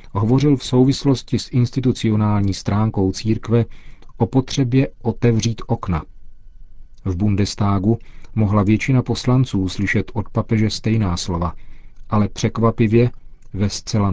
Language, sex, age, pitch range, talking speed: Czech, male, 40-59, 95-115 Hz, 105 wpm